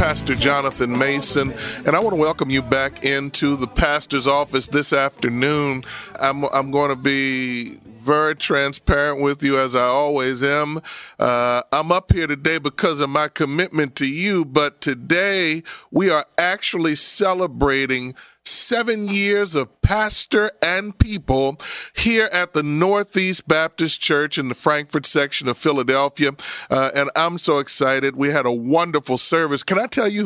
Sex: male